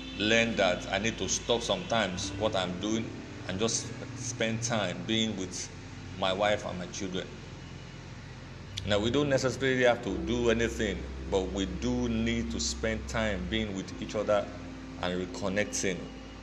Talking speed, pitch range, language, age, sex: 155 wpm, 100-125 Hz, English, 40-59, male